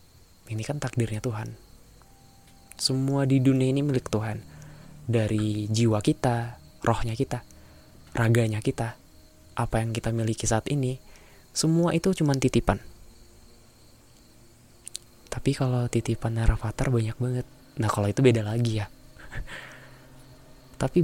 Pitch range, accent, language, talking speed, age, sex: 110-130 Hz, native, Indonesian, 115 wpm, 20-39, male